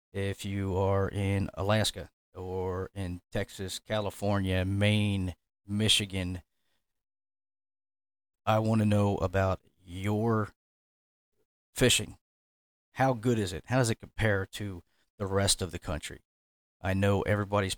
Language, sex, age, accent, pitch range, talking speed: English, male, 40-59, American, 95-110 Hz, 120 wpm